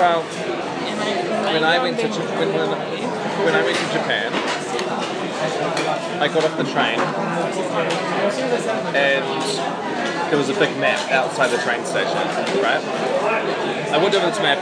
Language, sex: English, male